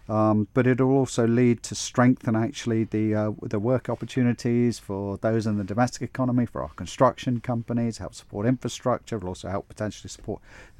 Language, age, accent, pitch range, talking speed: English, 40-59, British, 105-130 Hz, 180 wpm